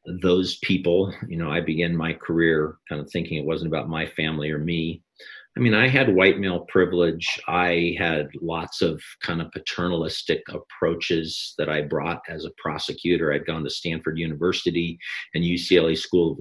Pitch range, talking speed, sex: 85-100 Hz, 175 wpm, male